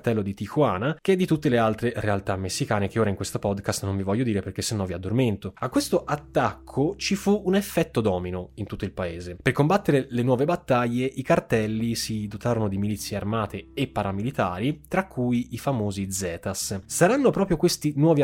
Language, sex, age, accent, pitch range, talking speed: Italian, male, 20-39, native, 105-155 Hz, 190 wpm